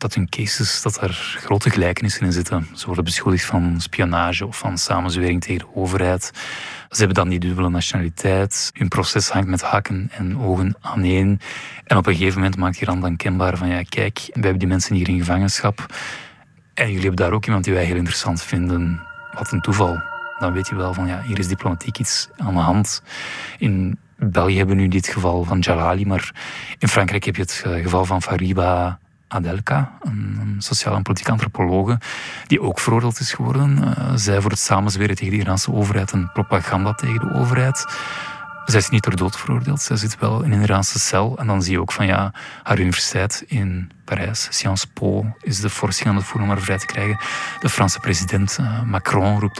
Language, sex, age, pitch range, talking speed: Dutch, male, 20-39, 95-115 Hz, 200 wpm